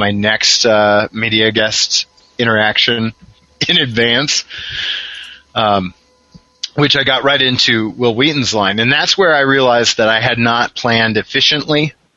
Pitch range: 105-130 Hz